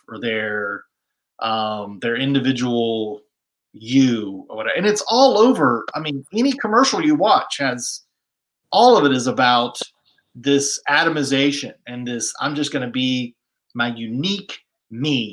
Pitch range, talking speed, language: 120-150 Hz, 135 wpm, English